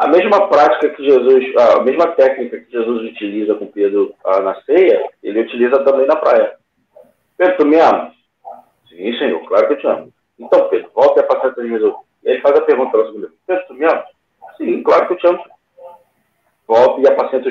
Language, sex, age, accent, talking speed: Portuguese, male, 40-59, Brazilian, 210 wpm